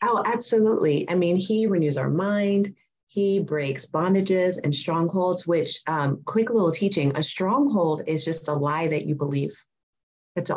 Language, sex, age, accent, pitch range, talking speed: English, female, 30-49, American, 155-190 Hz, 160 wpm